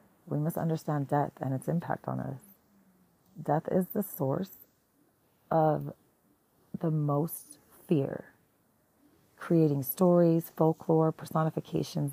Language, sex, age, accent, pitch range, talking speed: English, female, 30-49, American, 130-160 Hz, 105 wpm